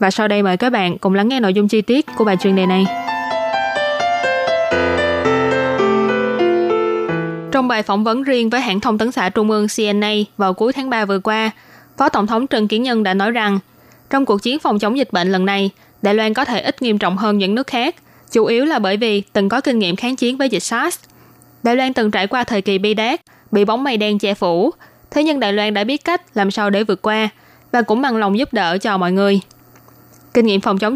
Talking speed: 235 wpm